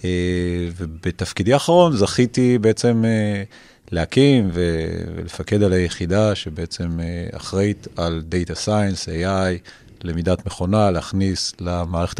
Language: Hebrew